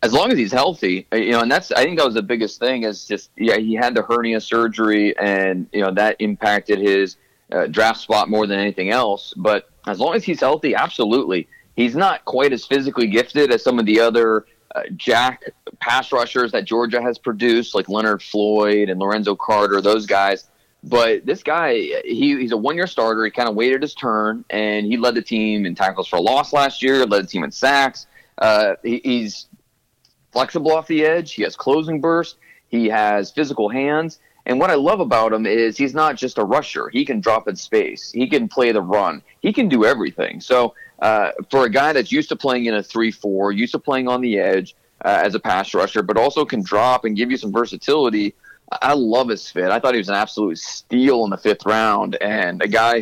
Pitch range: 105-135 Hz